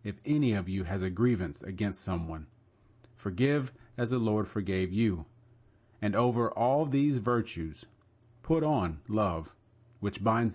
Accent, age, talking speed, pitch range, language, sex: American, 40-59, 140 wpm, 95-120 Hz, English, male